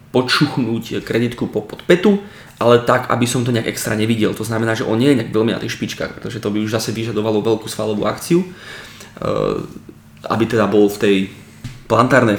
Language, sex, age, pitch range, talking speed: Slovak, male, 20-39, 110-125 Hz, 180 wpm